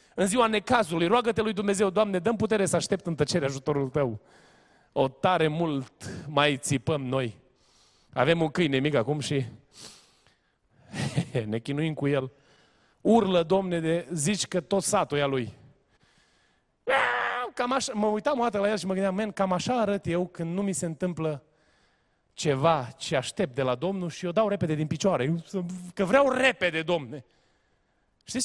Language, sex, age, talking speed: Romanian, male, 30-49, 165 wpm